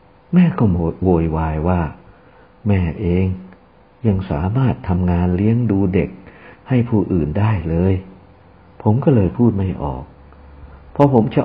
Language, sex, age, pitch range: Thai, male, 60-79, 80-105 Hz